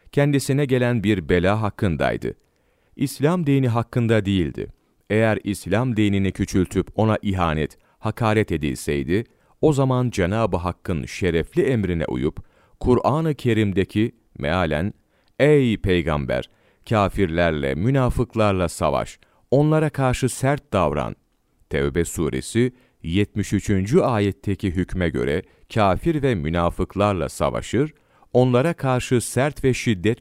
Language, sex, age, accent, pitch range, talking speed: Turkish, male, 40-59, native, 90-125 Hz, 100 wpm